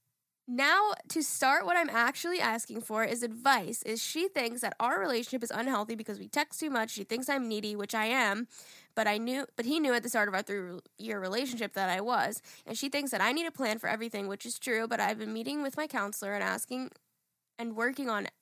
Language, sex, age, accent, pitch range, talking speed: English, female, 10-29, American, 215-260 Hz, 235 wpm